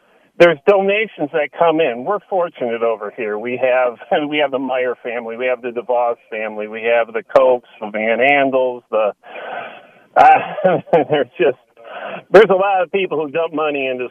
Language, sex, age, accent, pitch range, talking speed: English, male, 40-59, American, 120-175 Hz, 175 wpm